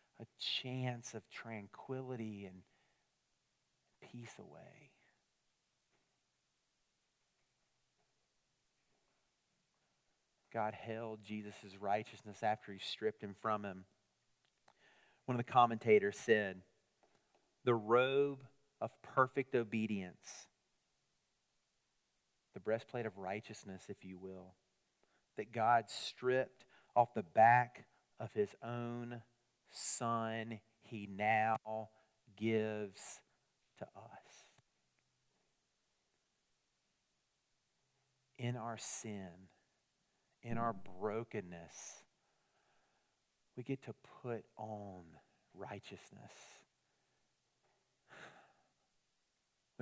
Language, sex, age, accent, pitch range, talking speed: English, male, 40-59, American, 105-125 Hz, 75 wpm